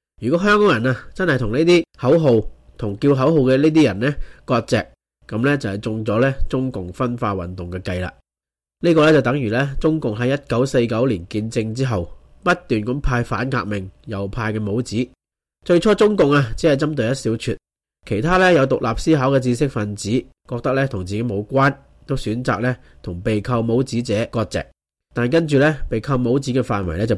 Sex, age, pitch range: male, 30-49, 110-145 Hz